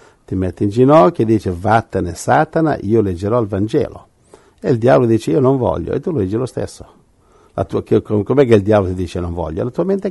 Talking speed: 225 wpm